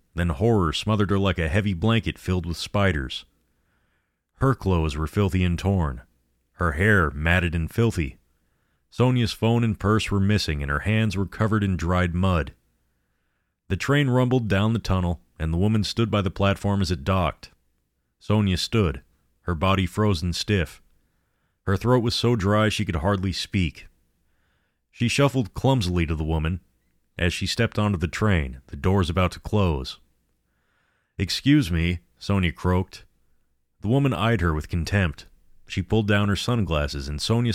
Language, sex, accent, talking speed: English, male, American, 160 wpm